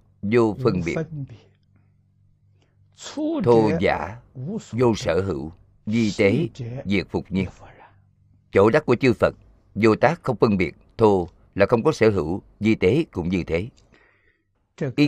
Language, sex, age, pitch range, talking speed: Vietnamese, male, 50-69, 95-115 Hz, 140 wpm